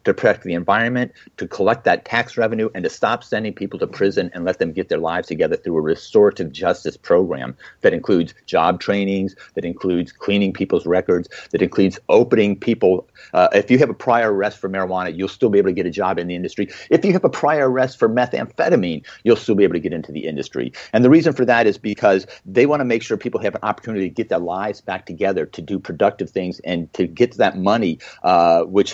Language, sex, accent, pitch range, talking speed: English, male, American, 95-115 Hz, 230 wpm